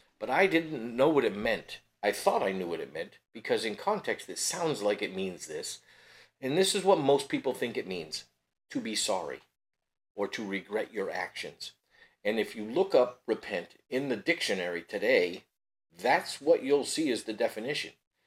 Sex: male